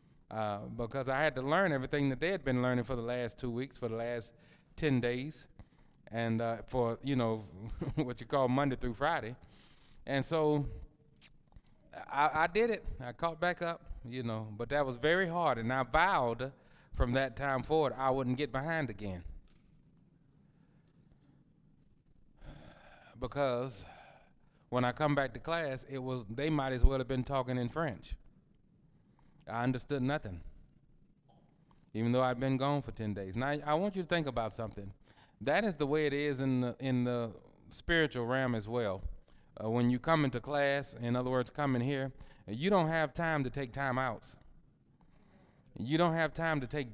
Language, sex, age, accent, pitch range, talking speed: English, male, 30-49, American, 120-155 Hz, 180 wpm